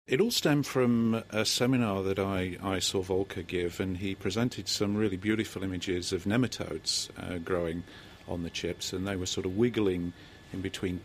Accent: British